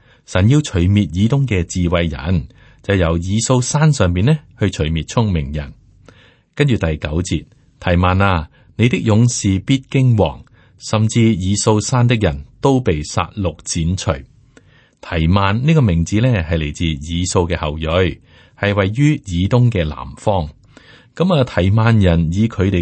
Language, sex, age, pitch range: Chinese, male, 30-49, 85-115 Hz